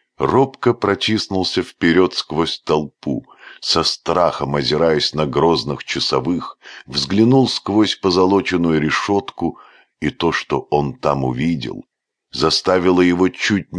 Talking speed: 105 wpm